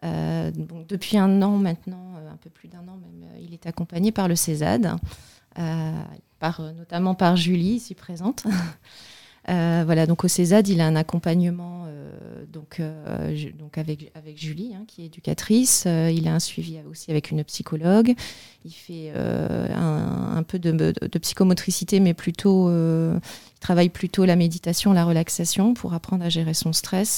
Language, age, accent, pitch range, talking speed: French, 30-49, French, 160-180 Hz, 180 wpm